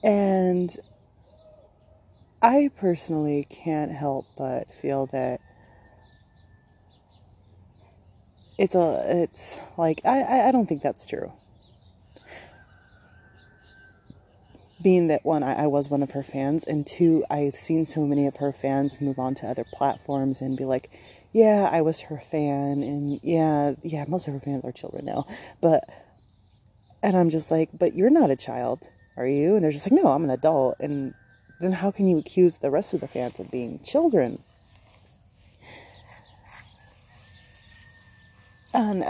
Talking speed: 145 wpm